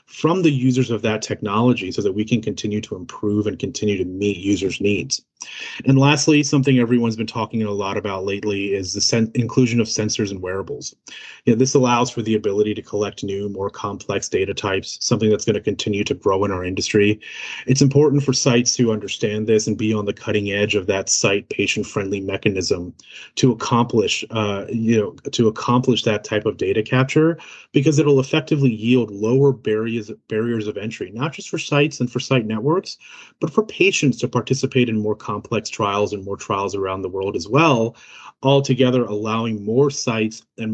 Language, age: English, 30-49